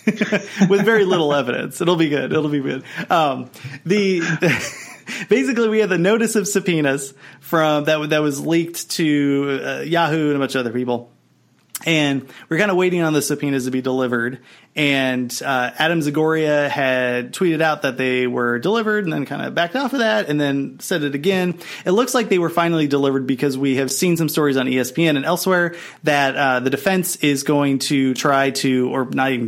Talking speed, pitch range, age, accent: 200 wpm, 135-175 Hz, 30-49, American